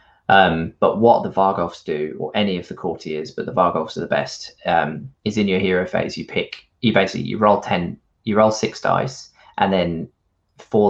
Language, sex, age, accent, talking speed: English, male, 20-39, British, 205 wpm